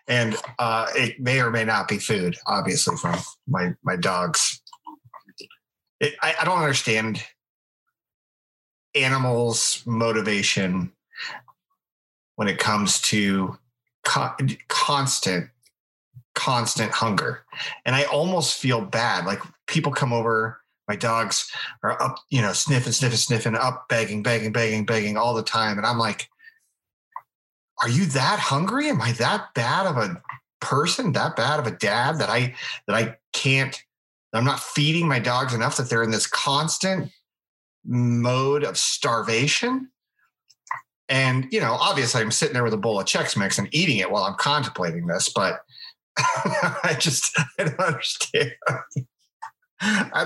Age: 30-49